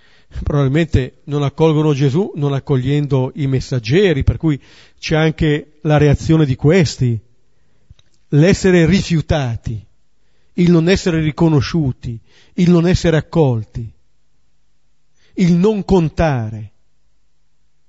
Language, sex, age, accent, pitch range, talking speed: Italian, male, 50-69, native, 125-175 Hz, 95 wpm